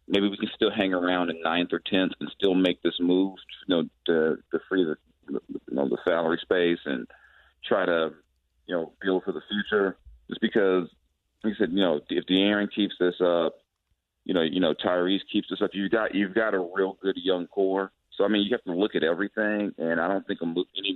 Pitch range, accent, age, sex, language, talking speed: 85-100 Hz, American, 40-59, male, English, 230 wpm